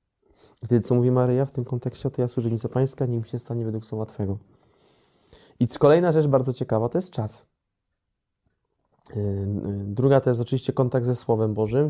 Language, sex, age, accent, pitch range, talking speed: Polish, male, 20-39, native, 110-125 Hz, 175 wpm